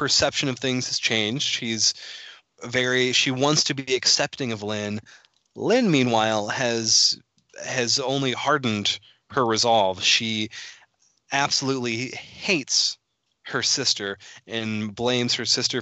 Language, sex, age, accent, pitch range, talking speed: English, male, 20-39, American, 110-140 Hz, 120 wpm